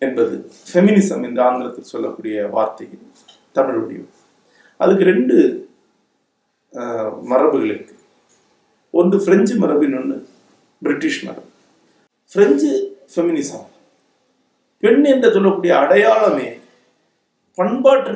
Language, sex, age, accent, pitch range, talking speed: Tamil, male, 50-69, native, 175-275 Hz, 85 wpm